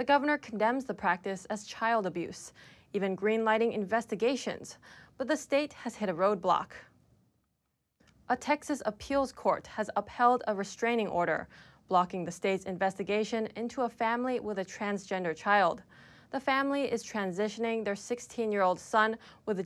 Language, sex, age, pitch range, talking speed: English, female, 20-39, 195-240 Hz, 140 wpm